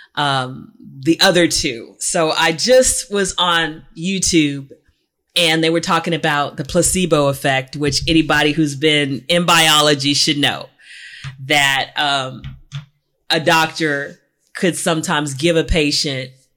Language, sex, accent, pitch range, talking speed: English, female, American, 145-175 Hz, 125 wpm